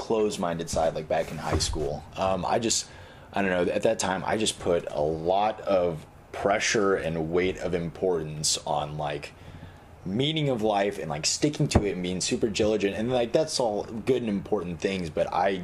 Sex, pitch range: male, 85-115 Hz